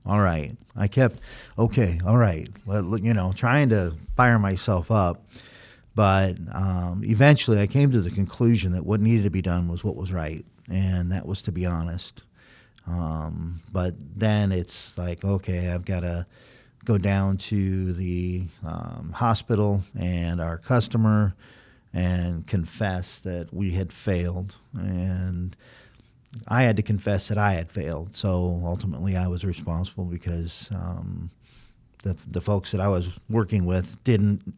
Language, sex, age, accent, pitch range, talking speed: English, male, 40-59, American, 90-110 Hz, 155 wpm